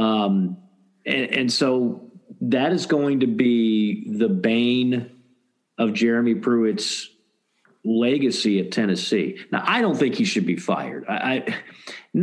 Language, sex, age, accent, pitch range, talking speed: English, male, 50-69, American, 110-145 Hz, 130 wpm